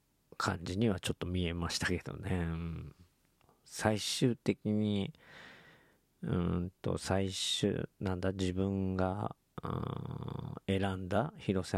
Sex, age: male, 40-59